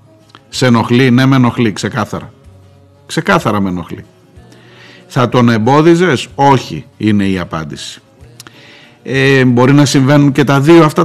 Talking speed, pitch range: 125 wpm, 110-170 Hz